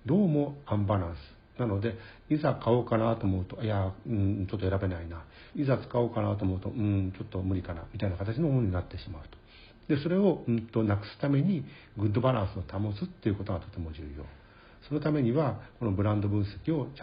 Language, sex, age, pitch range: Japanese, male, 60-79, 95-125 Hz